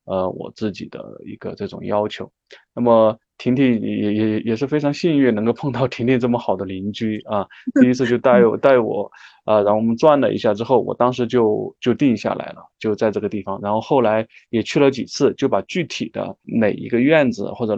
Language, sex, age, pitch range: Chinese, male, 20-39, 105-130 Hz